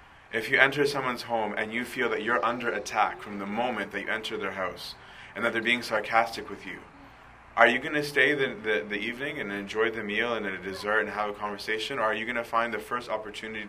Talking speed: 245 wpm